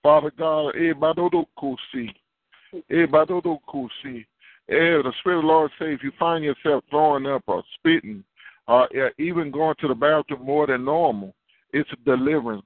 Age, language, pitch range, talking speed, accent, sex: 50-69, English, 140-165 Hz, 135 wpm, American, male